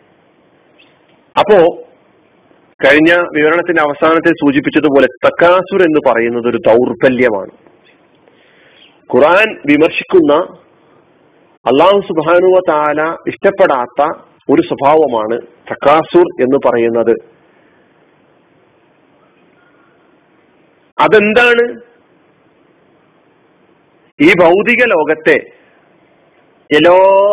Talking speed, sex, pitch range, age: 55 wpm, male, 140-220 Hz, 40-59